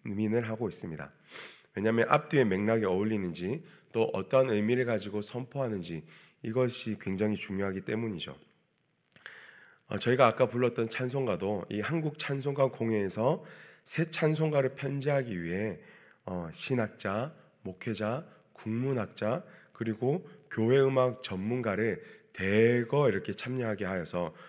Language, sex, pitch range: Korean, male, 105-140 Hz